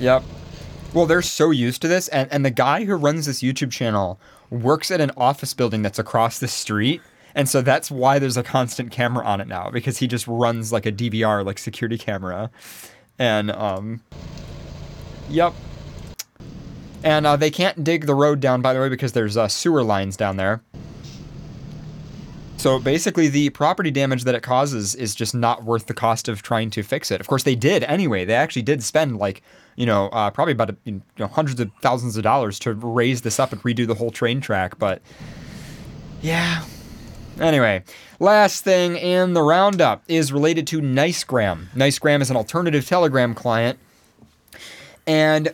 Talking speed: 180 wpm